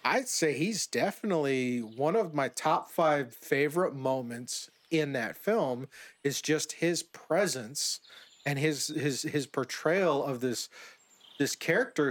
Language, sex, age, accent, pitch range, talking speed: English, male, 40-59, American, 130-160 Hz, 135 wpm